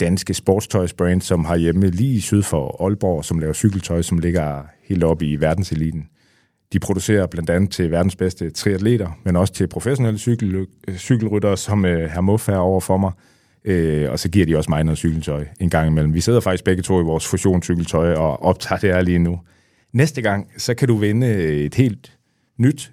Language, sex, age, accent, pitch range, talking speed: Danish, male, 30-49, native, 85-105 Hz, 195 wpm